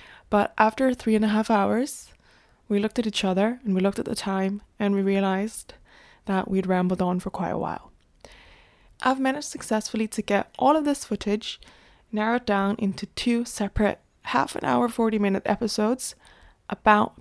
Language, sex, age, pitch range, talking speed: English, female, 20-39, 200-235 Hz, 175 wpm